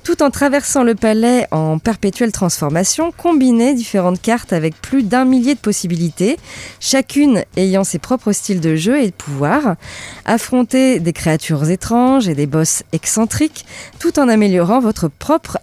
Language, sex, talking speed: French, female, 155 wpm